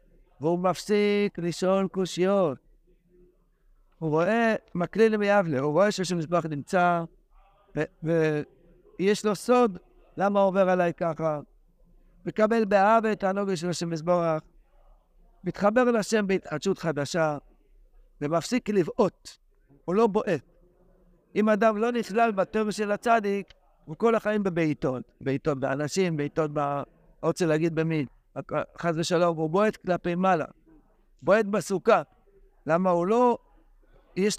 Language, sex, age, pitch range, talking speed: Hebrew, male, 60-79, 165-210 Hz, 120 wpm